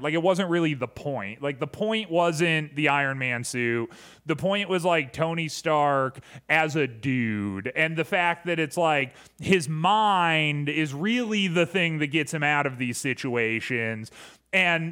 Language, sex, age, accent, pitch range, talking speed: English, male, 30-49, American, 135-175 Hz, 175 wpm